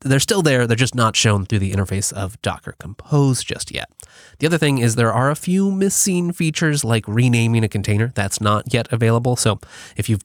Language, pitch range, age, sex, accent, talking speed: English, 100-130 Hz, 20-39, male, American, 210 wpm